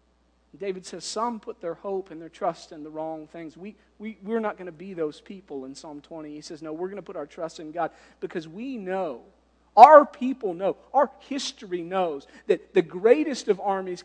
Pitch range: 175-235 Hz